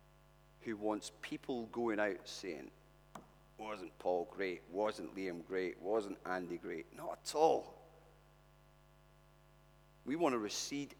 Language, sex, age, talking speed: English, male, 40-59, 120 wpm